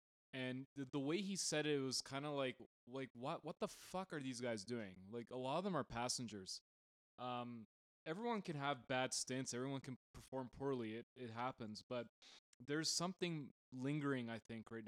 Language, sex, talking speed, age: English, male, 190 wpm, 20-39